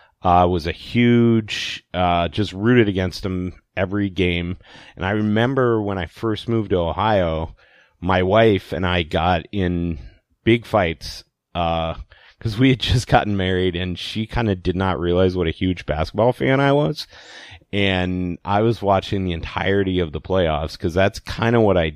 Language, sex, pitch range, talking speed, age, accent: English, male, 85-100 Hz, 175 wpm, 30-49, American